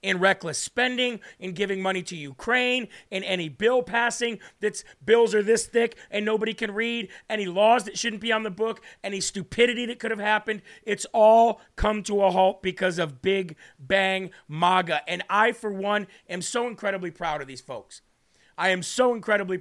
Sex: male